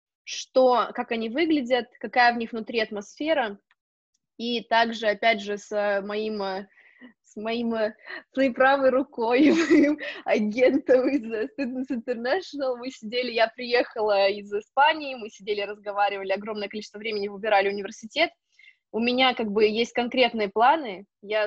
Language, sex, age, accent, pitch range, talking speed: Russian, female, 20-39, native, 200-245 Hz, 135 wpm